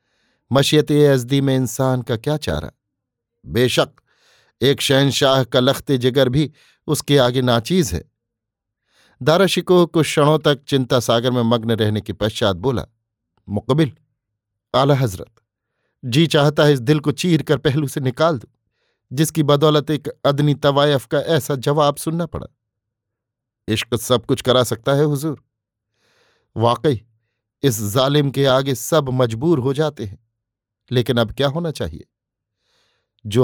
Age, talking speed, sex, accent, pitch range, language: 50-69, 140 wpm, male, native, 115-145 Hz, Hindi